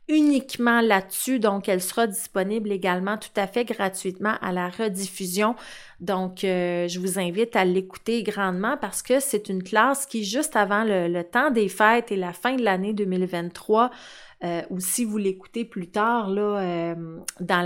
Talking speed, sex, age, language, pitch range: 175 wpm, female, 30-49, French, 190-235 Hz